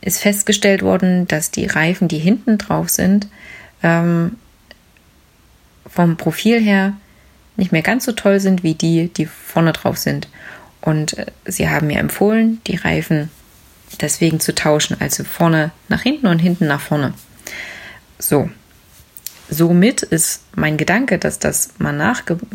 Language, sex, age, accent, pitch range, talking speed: German, female, 20-39, German, 165-205 Hz, 140 wpm